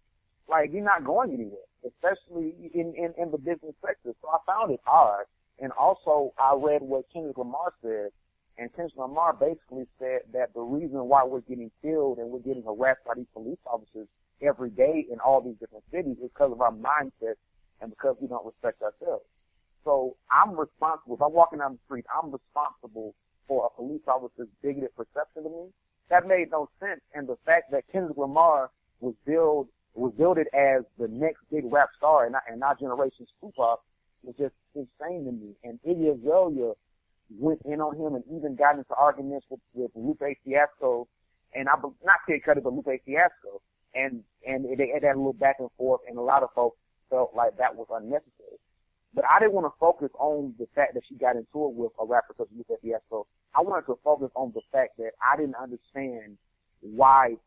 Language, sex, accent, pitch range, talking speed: English, male, American, 120-155 Hz, 195 wpm